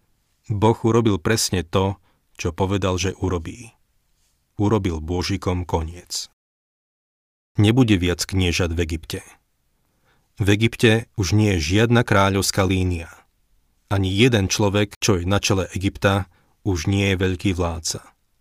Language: Slovak